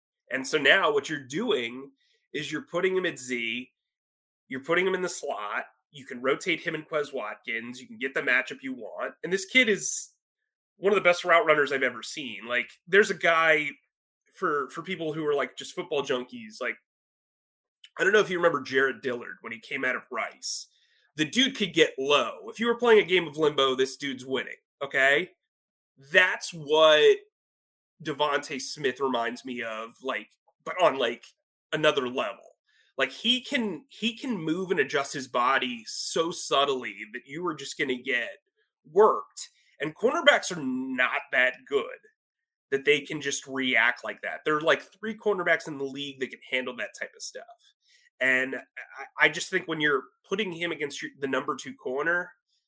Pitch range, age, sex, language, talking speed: 135-225 Hz, 30-49, male, English, 190 wpm